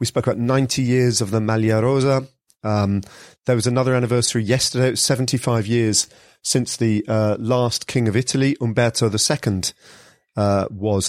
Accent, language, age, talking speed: British, English, 40-59, 160 wpm